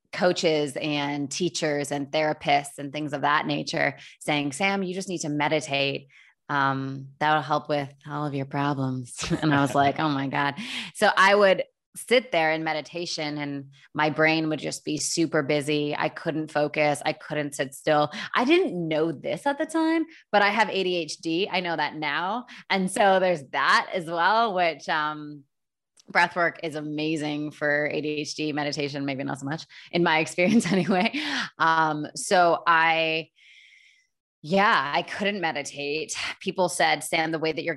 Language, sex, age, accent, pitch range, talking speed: English, female, 20-39, American, 145-175 Hz, 170 wpm